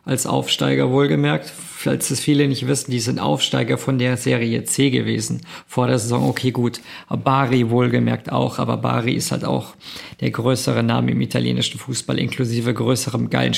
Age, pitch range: 50-69, 120-145 Hz